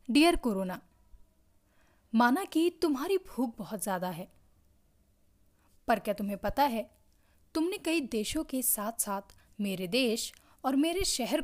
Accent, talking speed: native, 130 wpm